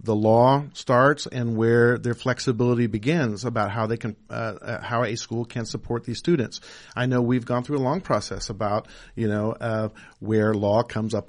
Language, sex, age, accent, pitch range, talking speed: English, male, 50-69, American, 110-130 Hz, 195 wpm